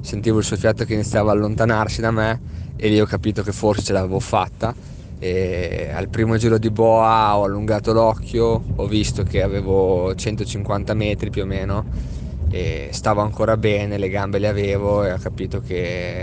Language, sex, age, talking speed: Italian, male, 20-39, 180 wpm